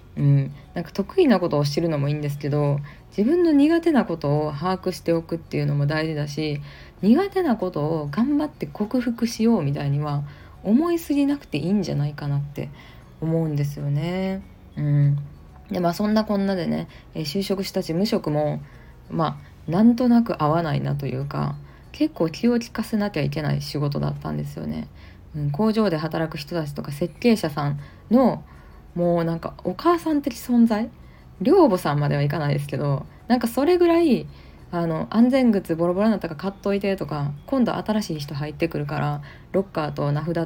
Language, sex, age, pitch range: Japanese, female, 20-39, 145-215 Hz